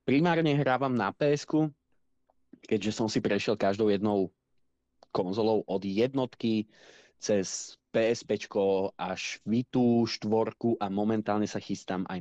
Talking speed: 120 wpm